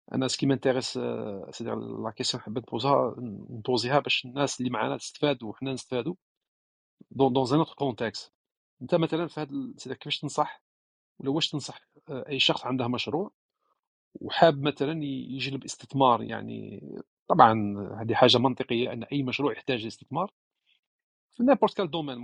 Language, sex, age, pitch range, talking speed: Arabic, male, 40-59, 120-150 Hz, 135 wpm